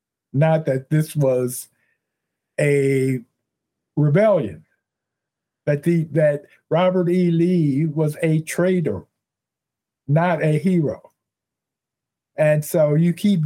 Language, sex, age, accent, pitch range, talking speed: English, male, 50-69, American, 135-165 Hz, 95 wpm